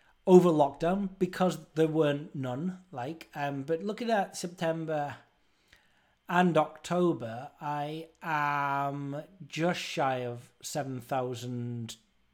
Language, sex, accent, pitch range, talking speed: English, male, British, 130-175 Hz, 100 wpm